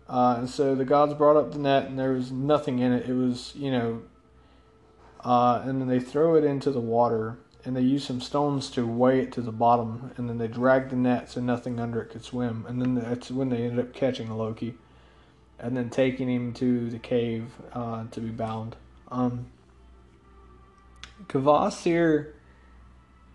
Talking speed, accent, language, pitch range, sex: 190 wpm, American, English, 115-130 Hz, male